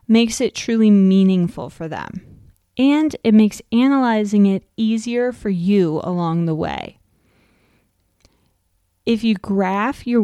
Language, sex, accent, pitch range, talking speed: English, female, American, 190-235 Hz, 125 wpm